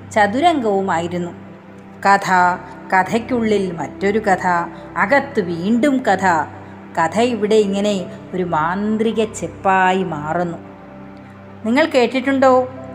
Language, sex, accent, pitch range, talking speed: Malayalam, female, native, 185-255 Hz, 80 wpm